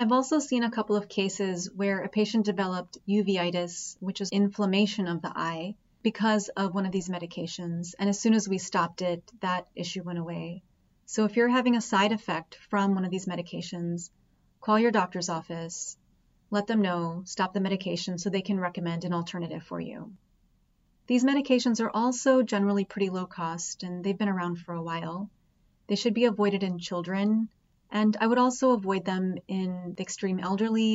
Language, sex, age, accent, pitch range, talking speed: English, female, 30-49, American, 180-215 Hz, 185 wpm